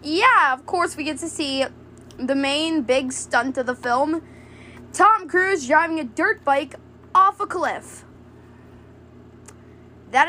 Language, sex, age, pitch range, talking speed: English, female, 20-39, 245-320 Hz, 140 wpm